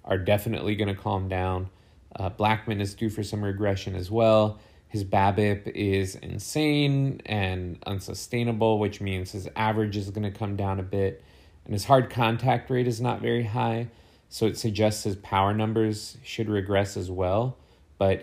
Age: 30-49